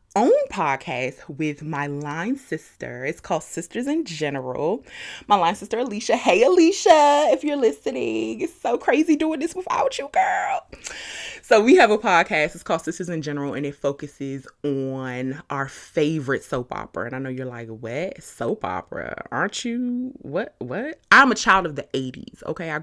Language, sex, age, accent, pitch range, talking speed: English, female, 20-39, American, 135-210 Hz, 175 wpm